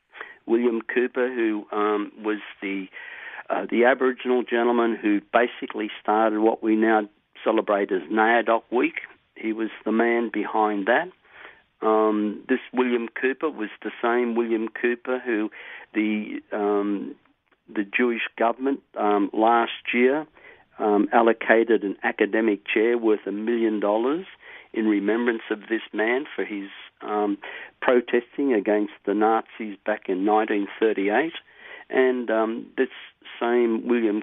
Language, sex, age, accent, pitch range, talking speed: English, male, 50-69, Australian, 105-120 Hz, 130 wpm